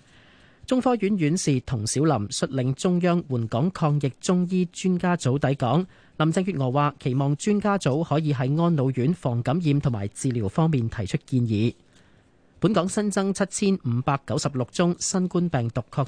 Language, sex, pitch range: Chinese, male, 125-170 Hz